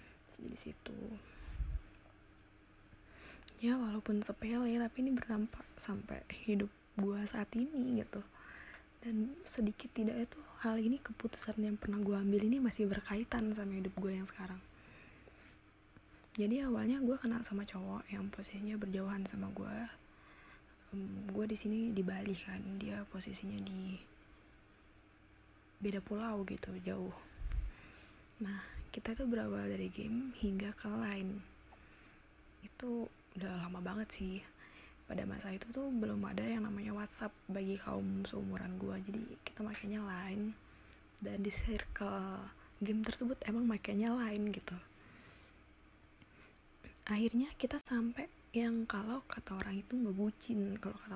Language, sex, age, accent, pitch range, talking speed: Indonesian, female, 20-39, native, 190-225 Hz, 130 wpm